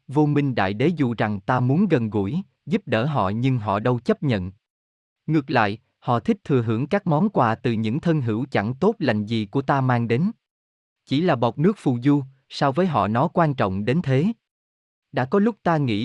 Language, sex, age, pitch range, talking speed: Vietnamese, male, 20-39, 110-155 Hz, 215 wpm